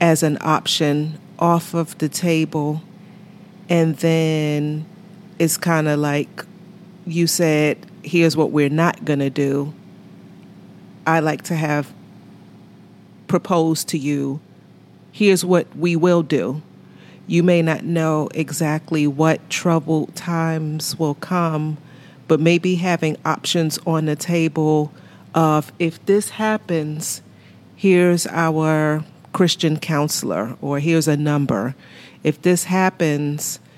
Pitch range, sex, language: 145-170 Hz, female, English